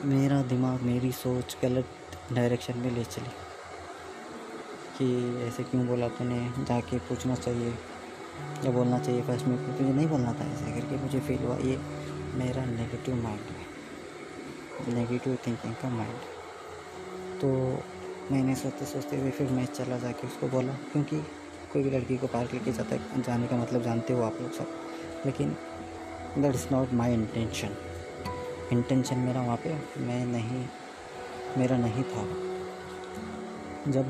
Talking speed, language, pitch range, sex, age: 145 wpm, Hindi, 115-130 Hz, female, 20-39